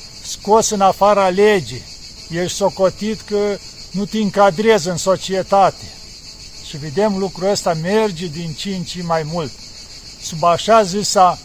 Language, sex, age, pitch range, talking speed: Romanian, male, 50-69, 180-210 Hz, 135 wpm